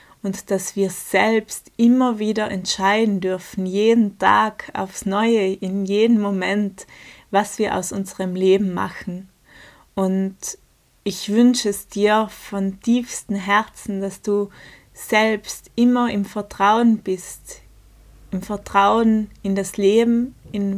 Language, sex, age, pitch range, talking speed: German, female, 20-39, 195-220 Hz, 120 wpm